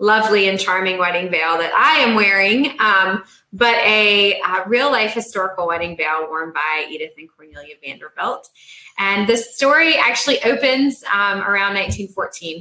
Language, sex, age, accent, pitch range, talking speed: English, female, 20-39, American, 170-215 Hz, 150 wpm